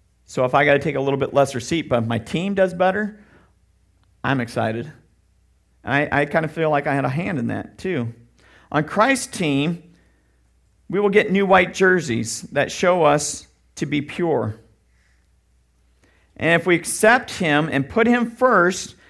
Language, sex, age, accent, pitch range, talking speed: English, male, 50-69, American, 140-210 Hz, 170 wpm